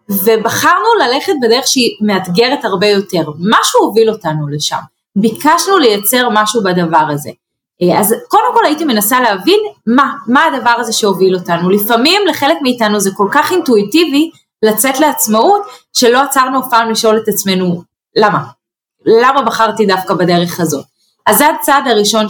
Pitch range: 210-290 Hz